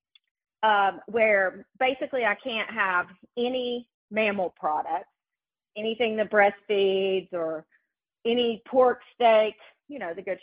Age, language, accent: 40-59, English, American